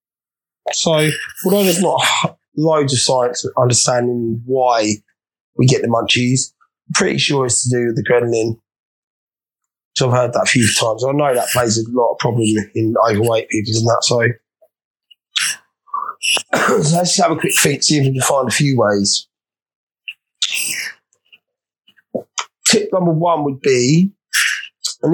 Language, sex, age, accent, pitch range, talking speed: English, male, 20-39, British, 120-155 Hz, 160 wpm